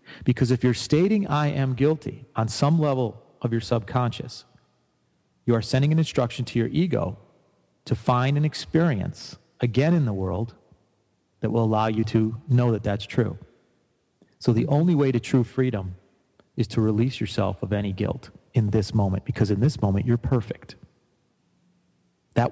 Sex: male